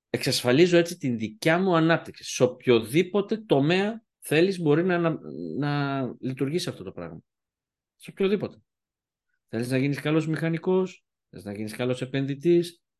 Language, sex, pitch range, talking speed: Greek, male, 130-195 Hz, 140 wpm